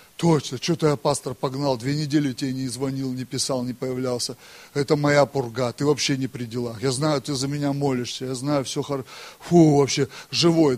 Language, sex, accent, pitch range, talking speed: Russian, male, native, 135-185 Hz, 195 wpm